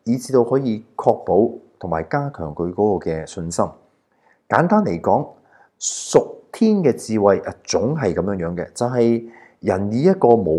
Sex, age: male, 30-49